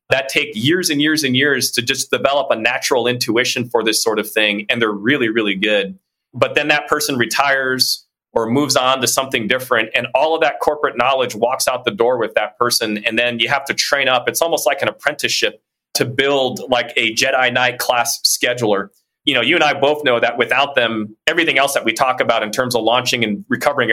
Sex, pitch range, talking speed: male, 110-135 Hz, 225 wpm